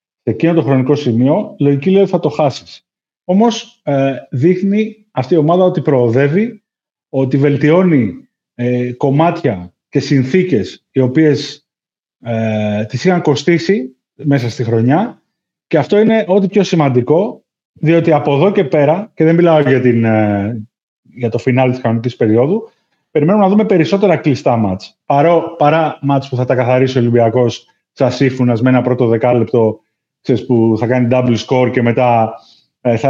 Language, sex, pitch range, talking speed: Greek, male, 120-165 Hz, 155 wpm